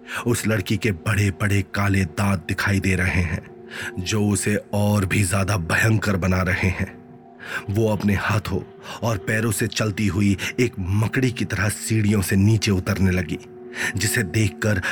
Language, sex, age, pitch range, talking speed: Hindi, male, 30-49, 95-115 Hz, 90 wpm